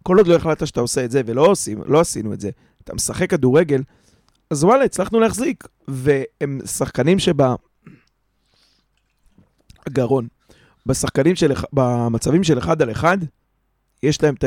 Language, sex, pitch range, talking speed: Hebrew, male, 125-155 Hz, 135 wpm